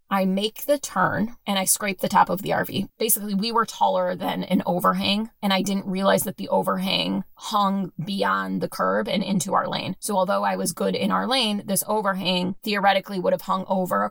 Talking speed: 215 wpm